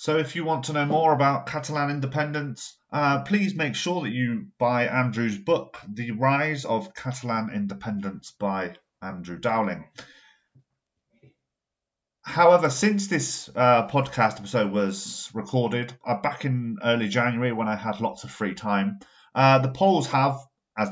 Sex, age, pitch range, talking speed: male, 30-49, 105-140 Hz, 150 wpm